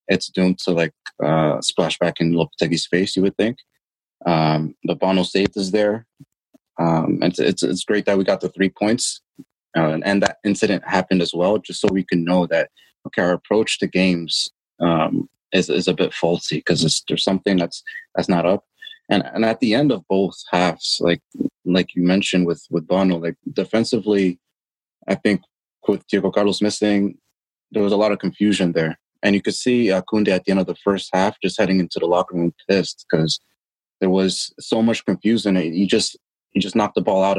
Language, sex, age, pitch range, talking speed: English, male, 30-49, 90-105 Hz, 205 wpm